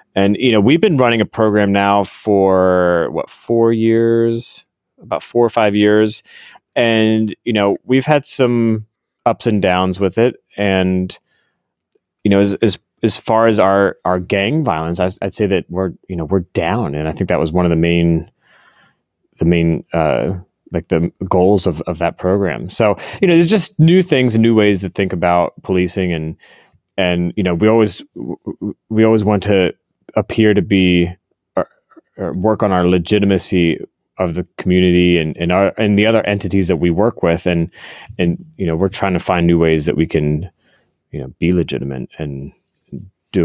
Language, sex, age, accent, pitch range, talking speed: English, male, 30-49, American, 90-115 Hz, 185 wpm